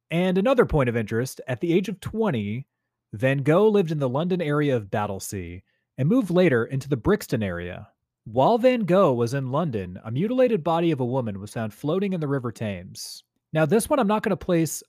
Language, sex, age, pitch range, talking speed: English, male, 30-49, 120-190 Hz, 215 wpm